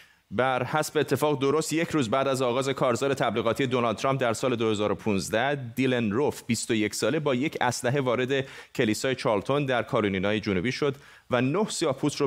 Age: 30-49